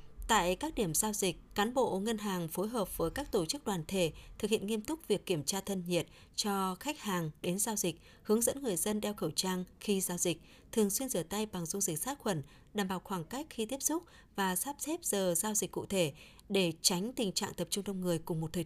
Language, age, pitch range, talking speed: Vietnamese, 20-39, 175-225 Hz, 250 wpm